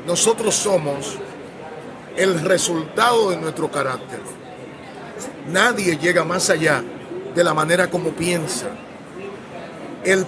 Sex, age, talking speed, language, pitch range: male, 40-59, 100 wpm, Spanish, 175-205 Hz